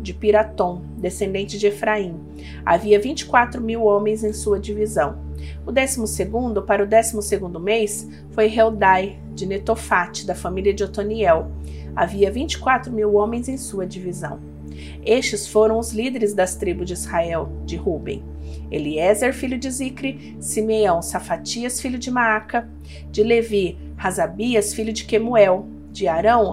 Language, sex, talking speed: Portuguese, female, 140 wpm